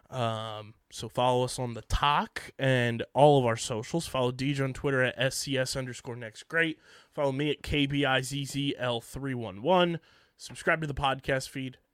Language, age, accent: English, 20-39, American